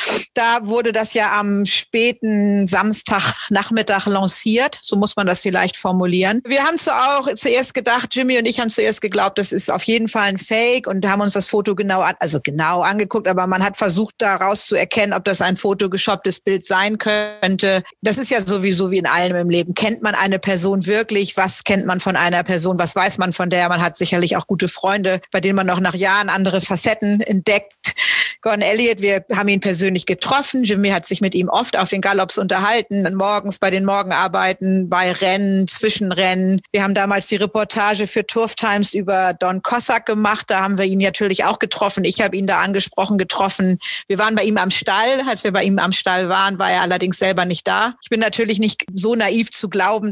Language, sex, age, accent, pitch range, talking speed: German, female, 40-59, German, 190-215 Hz, 205 wpm